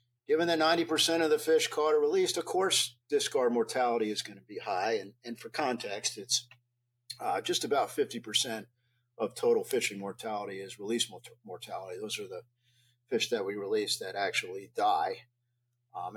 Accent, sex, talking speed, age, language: American, male, 175 wpm, 40-59, English